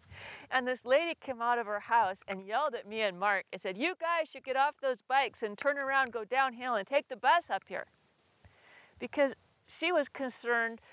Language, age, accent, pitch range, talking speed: English, 40-59, American, 195-260 Hz, 210 wpm